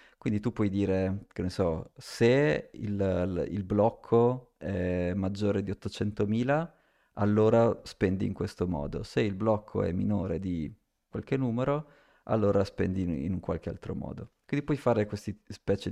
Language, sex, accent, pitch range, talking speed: Italian, male, native, 95-120 Hz, 150 wpm